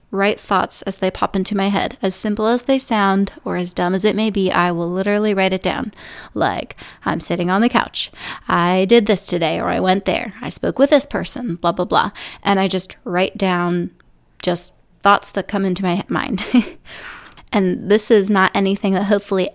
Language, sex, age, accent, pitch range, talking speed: English, female, 20-39, American, 185-230 Hz, 205 wpm